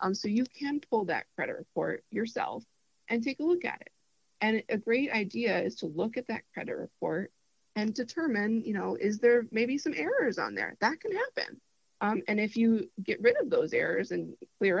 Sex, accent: female, American